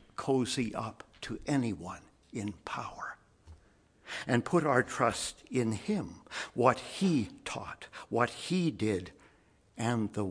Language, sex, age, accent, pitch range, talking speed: English, male, 60-79, American, 110-150 Hz, 115 wpm